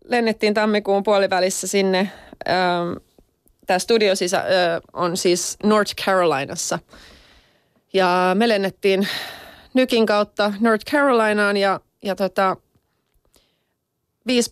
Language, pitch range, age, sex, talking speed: Finnish, 170-195 Hz, 30-49, female, 85 wpm